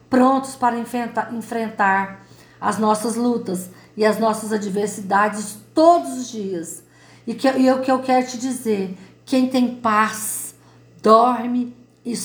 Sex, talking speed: female, 135 wpm